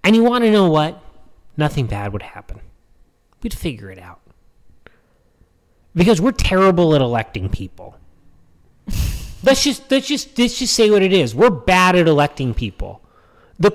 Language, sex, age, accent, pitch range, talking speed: English, male, 30-49, American, 120-205 Hz, 150 wpm